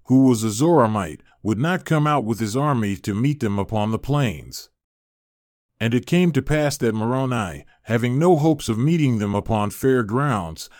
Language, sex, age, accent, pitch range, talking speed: English, male, 30-49, American, 105-145 Hz, 185 wpm